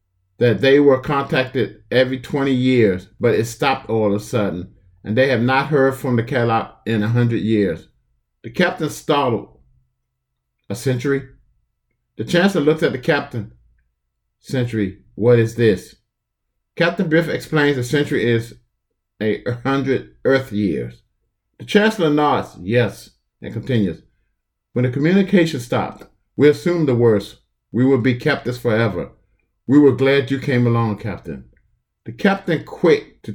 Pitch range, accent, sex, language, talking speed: 110-140 Hz, American, male, English, 145 wpm